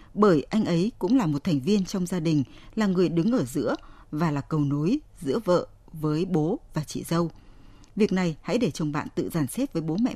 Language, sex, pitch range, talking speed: Vietnamese, female, 150-215 Hz, 230 wpm